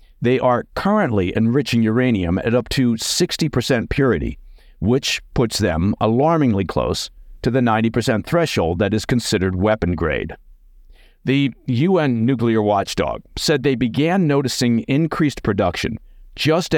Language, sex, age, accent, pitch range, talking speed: English, male, 50-69, American, 95-130 Hz, 125 wpm